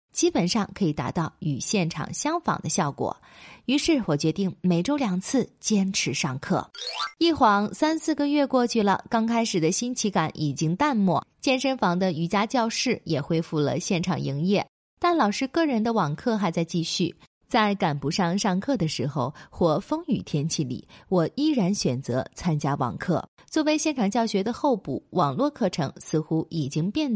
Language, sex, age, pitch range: Chinese, female, 20-39, 155-235 Hz